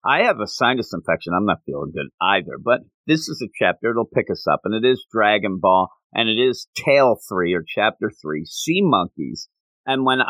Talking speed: 210 wpm